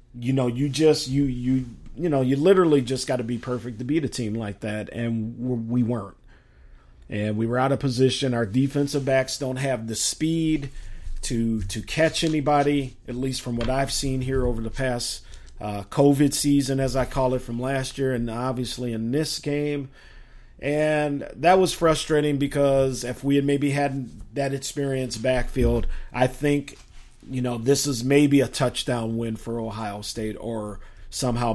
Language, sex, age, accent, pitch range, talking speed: English, male, 40-59, American, 115-140 Hz, 180 wpm